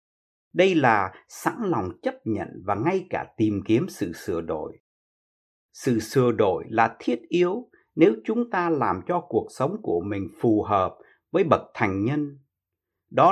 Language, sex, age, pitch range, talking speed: Vietnamese, male, 60-79, 110-170 Hz, 160 wpm